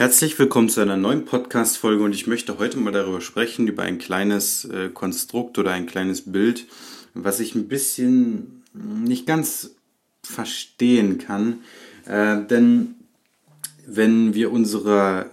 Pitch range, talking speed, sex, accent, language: 100-125 Hz, 135 wpm, male, German, German